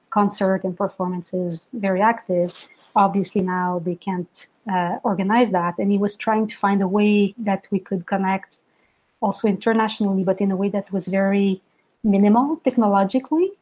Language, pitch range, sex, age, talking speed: English, 185-220 Hz, female, 30-49, 155 wpm